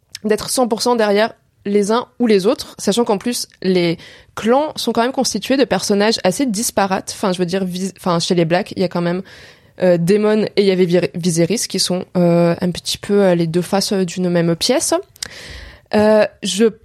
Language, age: French, 20-39